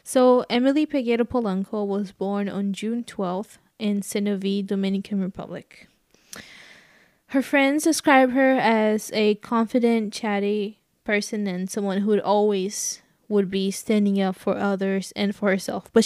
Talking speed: 135 wpm